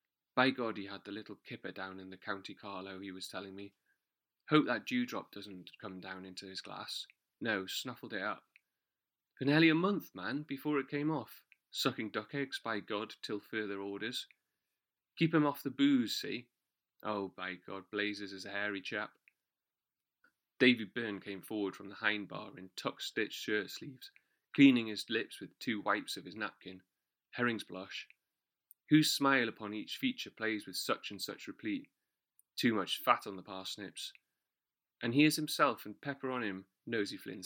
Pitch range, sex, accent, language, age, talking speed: 100-135 Hz, male, British, English, 30-49, 175 wpm